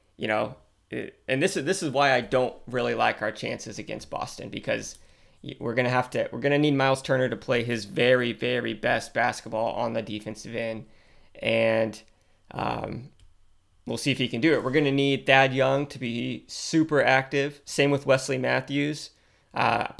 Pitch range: 110-140 Hz